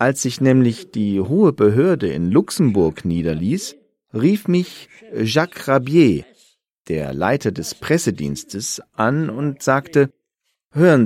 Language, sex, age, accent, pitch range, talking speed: French, male, 40-59, German, 120-175 Hz, 115 wpm